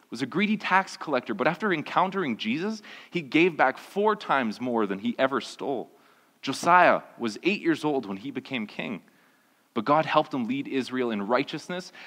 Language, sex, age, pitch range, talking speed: English, male, 30-49, 115-195 Hz, 180 wpm